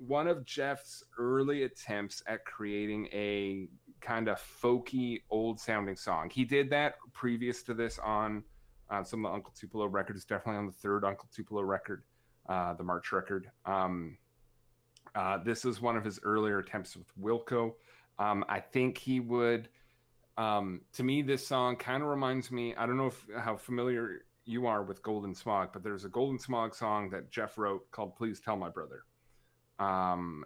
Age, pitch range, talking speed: 30-49, 95-120 Hz, 175 wpm